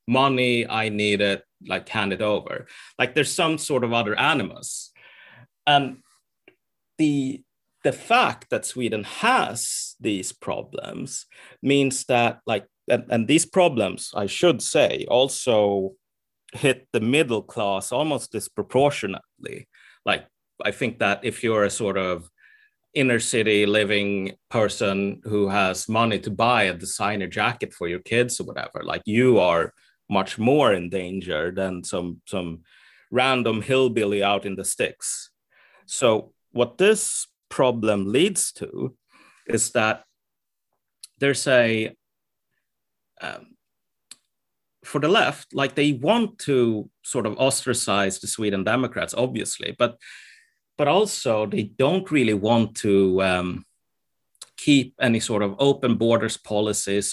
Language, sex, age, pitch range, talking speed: English, male, 30-49, 100-130 Hz, 130 wpm